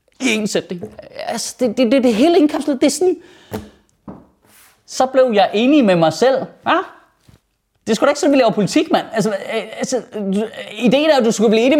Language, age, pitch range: Danish, 30-49, 200-280 Hz